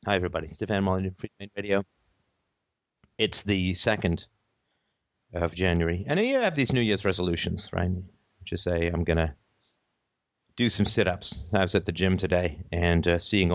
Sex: male